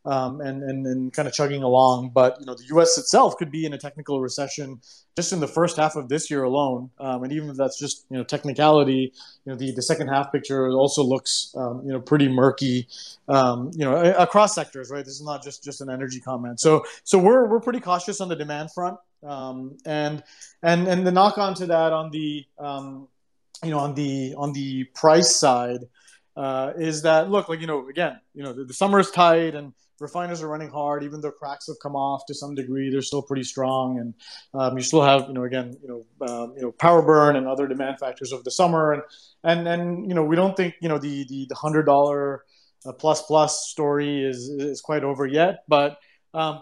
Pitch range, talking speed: 135-160 Hz, 225 wpm